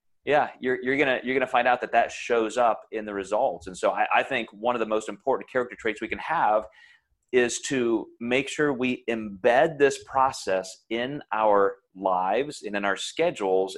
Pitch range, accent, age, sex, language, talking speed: 105-135 Hz, American, 30-49, male, English, 205 wpm